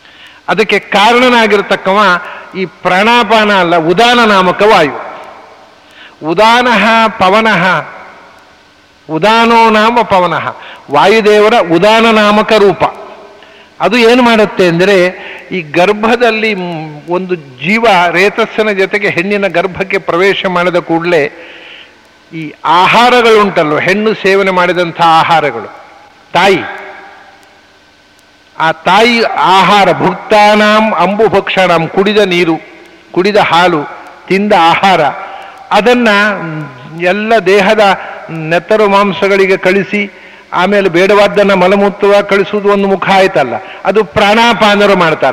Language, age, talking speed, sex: English, 60-79, 80 wpm, male